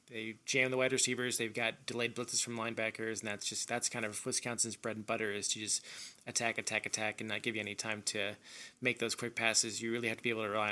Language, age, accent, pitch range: English, 20-39, American, 110-125 Hz